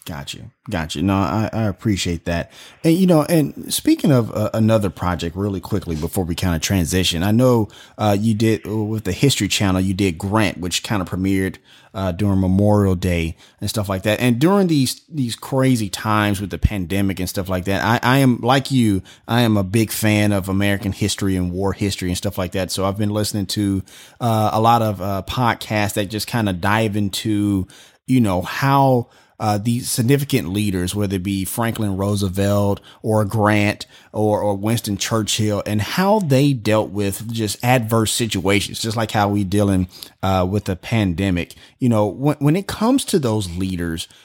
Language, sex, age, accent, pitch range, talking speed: English, male, 30-49, American, 95-115 Hz, 190 wpm